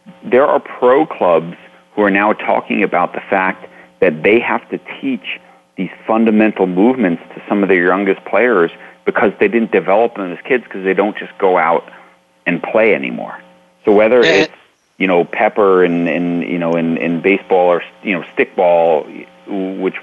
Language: English